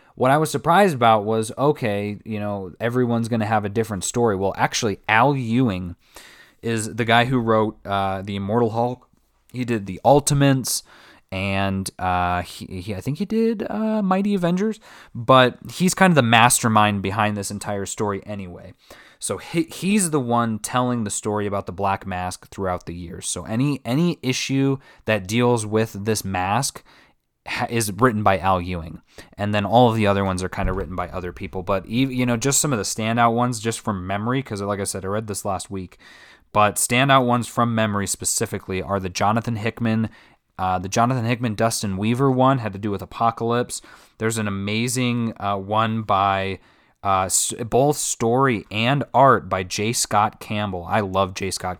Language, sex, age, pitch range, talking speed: English, male, 20-39, 95-120 Hz, 185 wpm